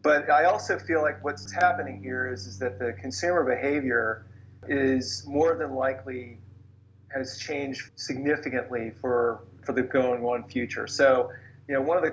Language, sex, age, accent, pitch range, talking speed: English, male, 40-59, American, 120-140 Hz, 165 wpm